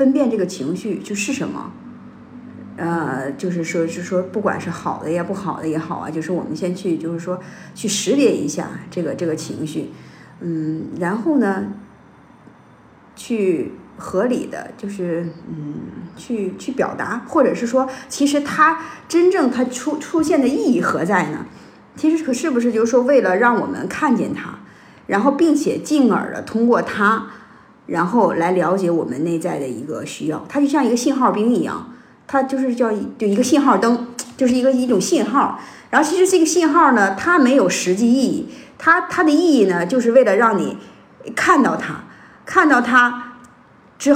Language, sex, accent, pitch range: Chinese, female, native, 180-270 Hz